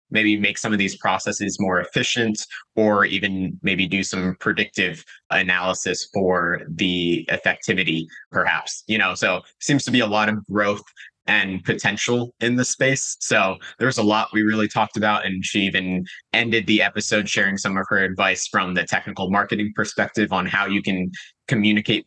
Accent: American